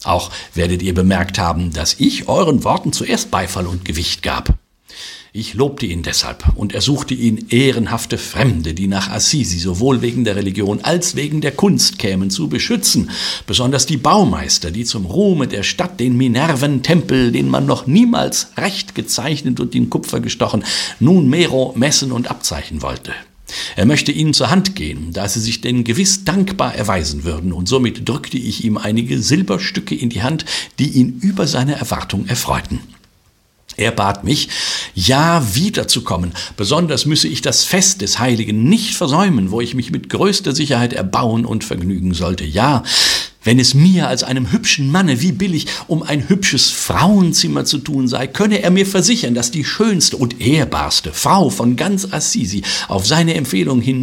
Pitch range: 100-150 Hz